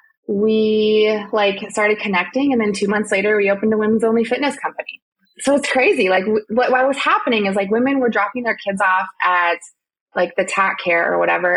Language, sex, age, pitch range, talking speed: English, female, 20-39, 185-230 Hz, 205 wpm